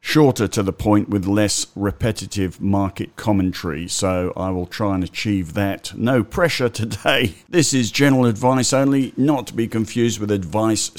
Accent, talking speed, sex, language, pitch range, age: British, 165 wpm, male, English, 95-115 Hz, 50-69